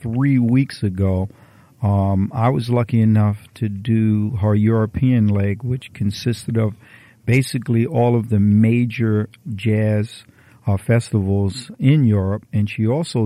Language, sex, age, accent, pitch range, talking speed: English, male, 50-69, American, 105-120 Hz, 130 wpm